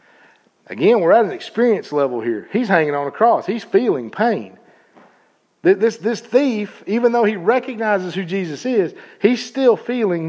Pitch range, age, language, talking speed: 130-175 Hz, 50-69, English, 165 wpm